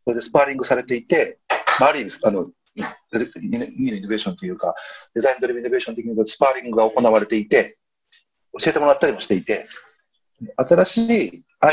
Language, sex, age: Japanese, male, 40-59